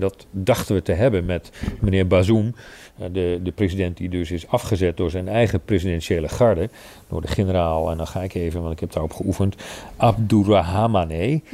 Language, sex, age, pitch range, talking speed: Dutch, male, 40-59, 90-110 Hz, 175 wpm